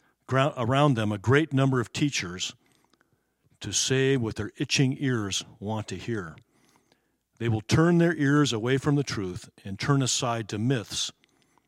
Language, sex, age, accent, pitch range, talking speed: English, male, 50-69, American, 105-140 Hz, 155 wpm